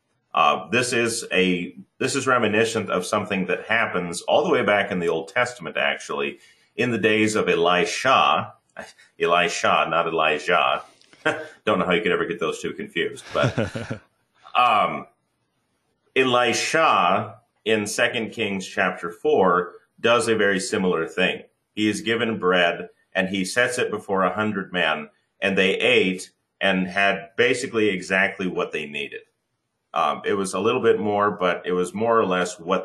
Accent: American